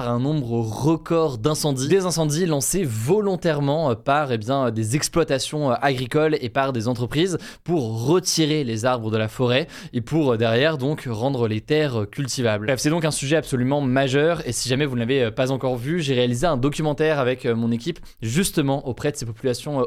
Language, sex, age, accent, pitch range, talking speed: French, male, 20-39, French, 125-155 Hz, 185 wpm